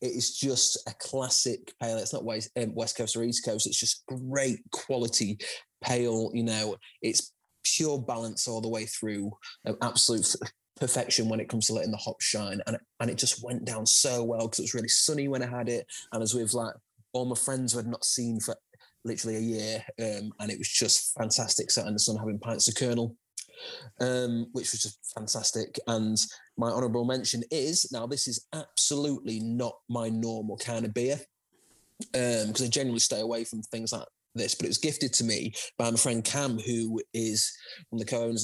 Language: English